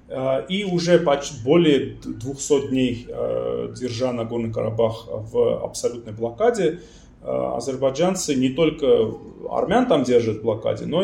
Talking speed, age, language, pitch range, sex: 115 wpm, 20-39, Russian, 115-145 Hz, male